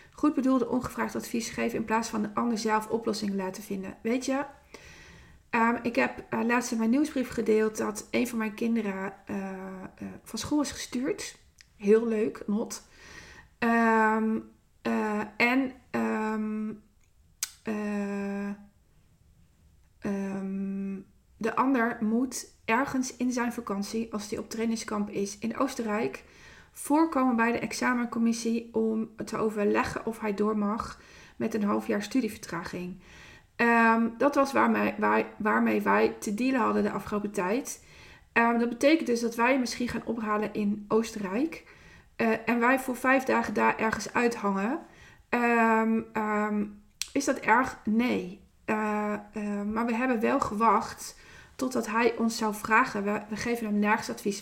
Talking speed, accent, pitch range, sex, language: 135 wpm, Dutch, 205-235 Hz, female, Dutch